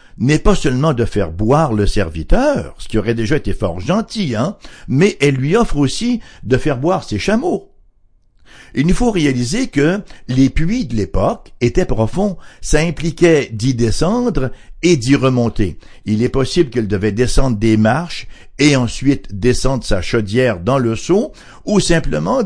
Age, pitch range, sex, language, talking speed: 60-79, 110-160 Hz, male, English, 165 wpm